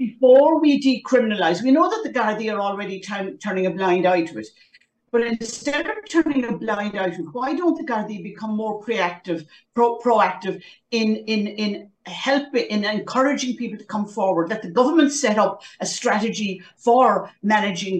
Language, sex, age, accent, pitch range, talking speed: English, female, 50-69, British, 190-250 Hz, 175 wpm